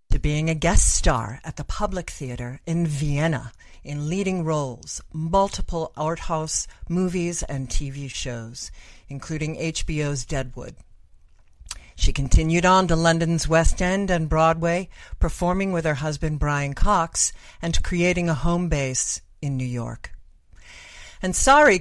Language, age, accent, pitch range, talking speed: English, 50-69, American, 140-175 Hz, 130 wpm